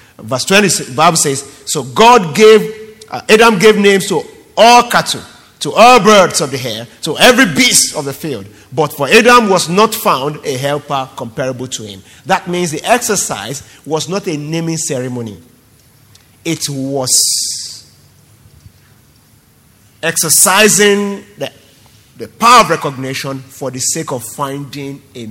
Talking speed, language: 145 wpm, English